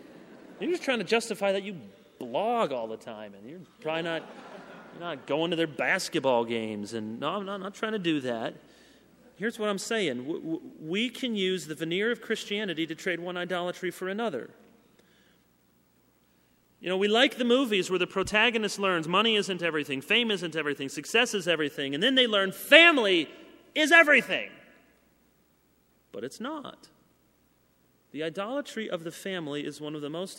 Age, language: 30-49, English